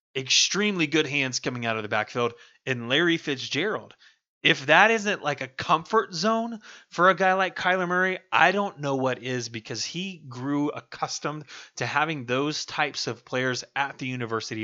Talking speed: 170 wpm